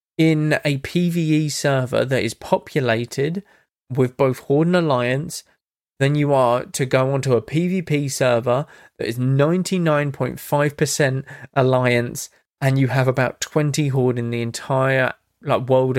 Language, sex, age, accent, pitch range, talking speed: English, male, 20-39, British, 130-190 Hz, 135 wpm